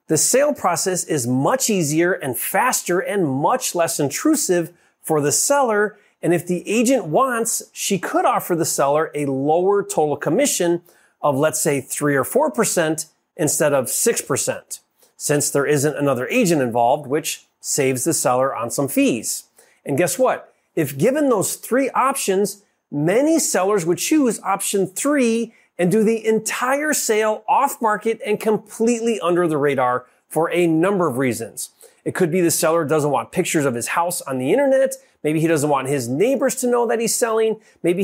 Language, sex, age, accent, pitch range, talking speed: English, male, 30-49, American, 155-230 Hz, 170 wpm